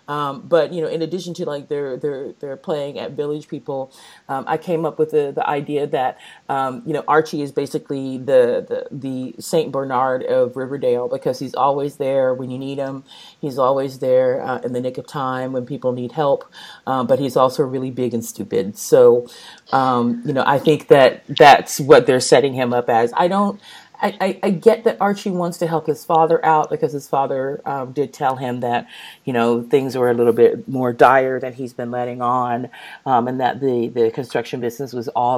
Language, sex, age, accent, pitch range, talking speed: English, female, 30-49, American, 130-165 Hz, 205 wpm